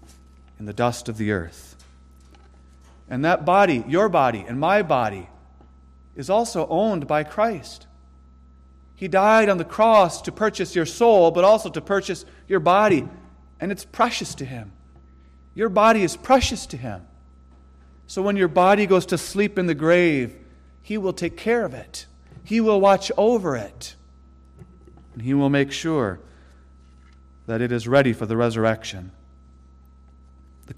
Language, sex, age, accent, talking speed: English, male, 40-59, American, 155 wpm